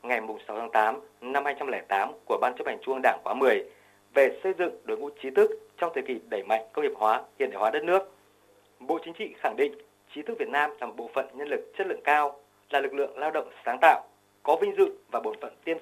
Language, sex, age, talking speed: Vietnamese, male, 20-39, 255 wpm